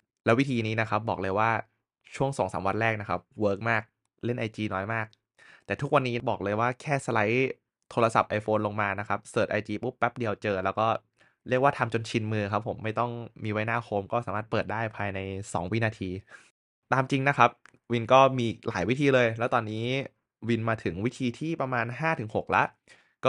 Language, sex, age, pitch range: Thai, male, 20-39, 105-130 Hz